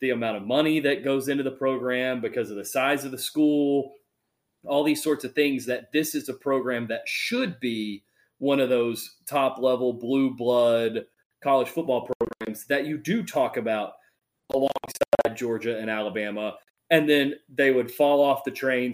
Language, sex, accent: English, male, American